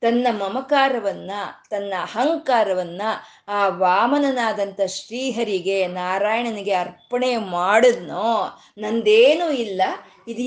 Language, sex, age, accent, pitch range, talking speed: Kannada, female, 20-39, native, 210-280 Hz, 75 wpm